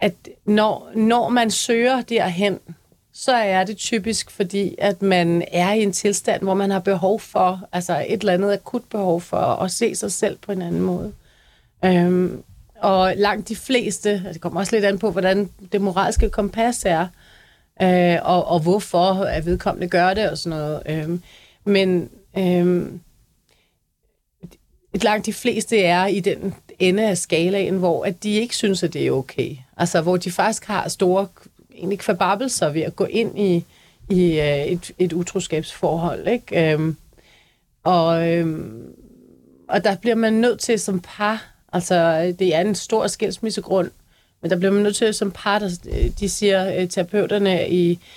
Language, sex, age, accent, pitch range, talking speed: Danish, female, 30-49, native, 175-205 Hz, 160 wpm